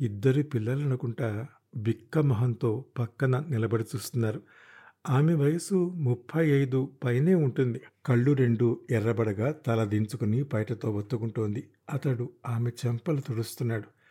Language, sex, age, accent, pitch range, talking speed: Telugu, male, 50-69, native, 115-140 Hz, 105 wpm